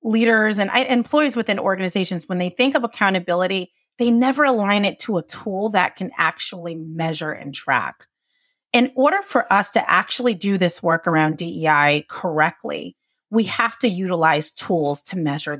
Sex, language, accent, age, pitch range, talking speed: female, English, American, 30-49, 170-225 Hz, 160 wpm